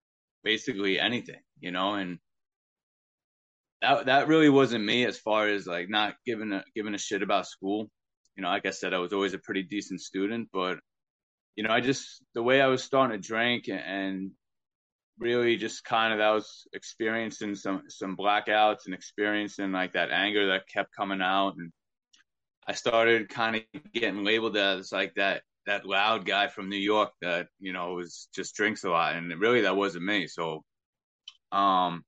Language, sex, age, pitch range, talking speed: English, male, 20-39, 95-110 Hz, 180 wpm